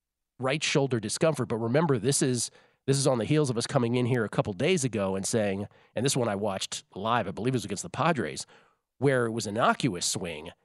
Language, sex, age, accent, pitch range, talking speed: English, male, 40-59, American, 105-140 Hz, 235 wpm